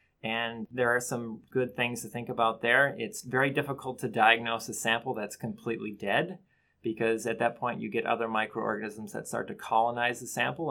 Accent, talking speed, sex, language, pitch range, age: American, 190 wpm, male, English, 110-130 Hz, 30-49